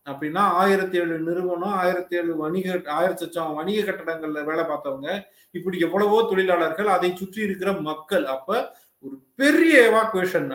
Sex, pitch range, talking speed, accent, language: male, 180-245 Hz, 135 wpm, native, Tamil